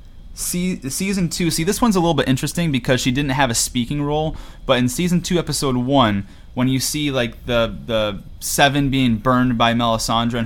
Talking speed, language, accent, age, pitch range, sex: 200 wpm, English, American, 30-49, 115-140 Hz, male